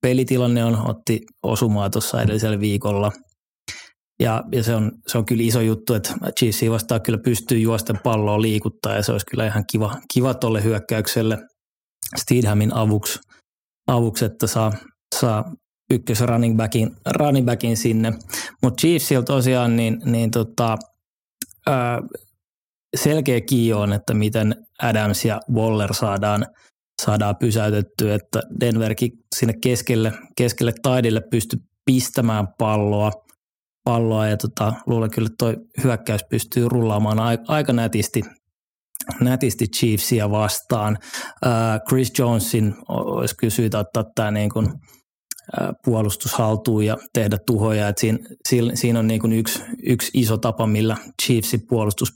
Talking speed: 130 wpm